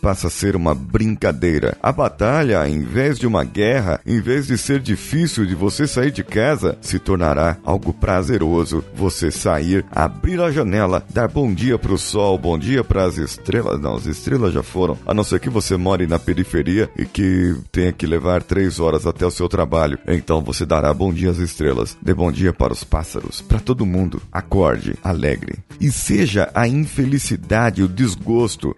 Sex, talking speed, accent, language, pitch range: male, 185 wpm, Brazilian, Portuguese, 85-115 Hz